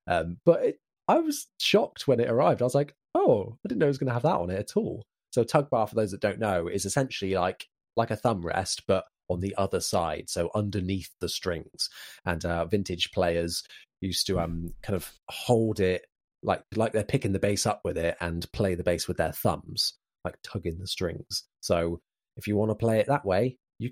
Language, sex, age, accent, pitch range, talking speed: English, male, 30-49, British, 90-120 Hz, 225 wpm